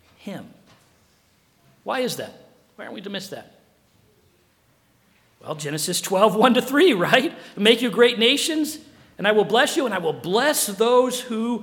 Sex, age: male, 50-69